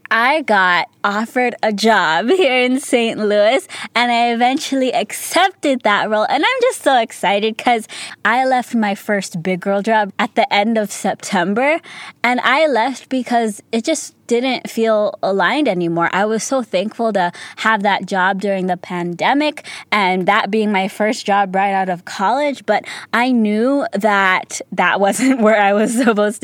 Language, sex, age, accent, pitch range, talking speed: English, female, 20-39, American, 200-245 Hz, 170 wpm